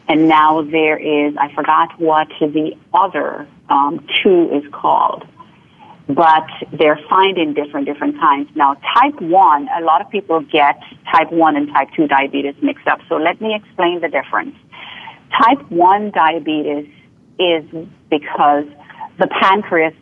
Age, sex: 40-59, female